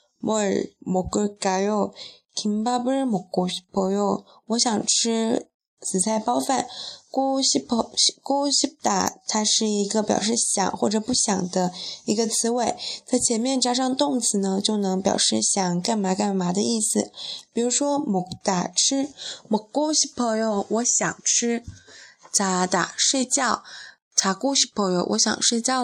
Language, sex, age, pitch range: Chinese, female, 20-39, 195-245 Hz